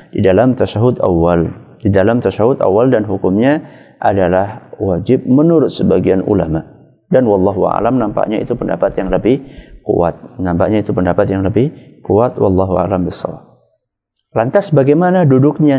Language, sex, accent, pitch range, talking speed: English, male, Indonesian, 95-130 Hz, 135 wpm